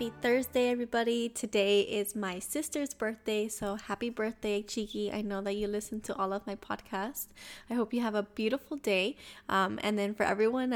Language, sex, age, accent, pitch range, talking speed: English, female, 10-29, American, 205-235 Hz, 190 wpm